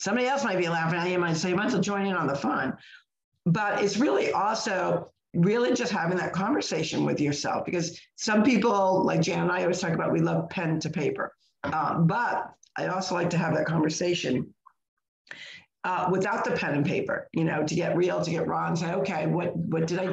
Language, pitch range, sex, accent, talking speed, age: English, 165-185 Hz, female, American, 225 wpm, 50-69